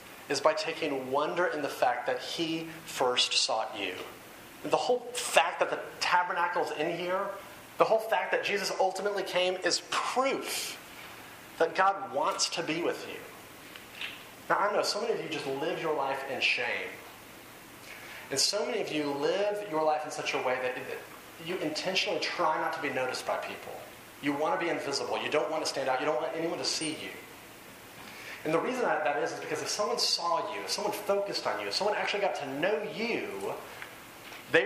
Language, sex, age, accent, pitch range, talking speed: English, male, 30-49, American, 150-205 Hz, 200 wpm